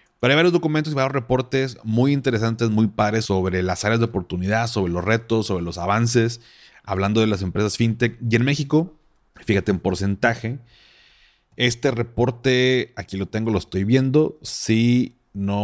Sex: male